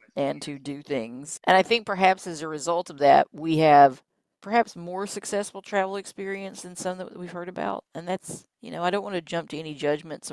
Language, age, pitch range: English, 40-59, 150-195 Hz